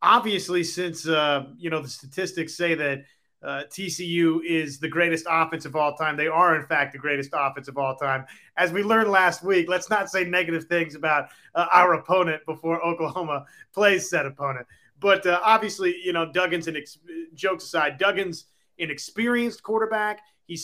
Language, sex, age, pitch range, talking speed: English, male, 30-49, 160-185 Hz, 175 wpm